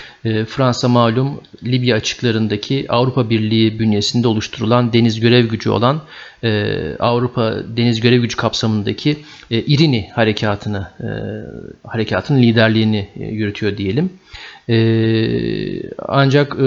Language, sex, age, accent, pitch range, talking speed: Turkish, male, 40-59, native, 110-125 Hz, 85 wpm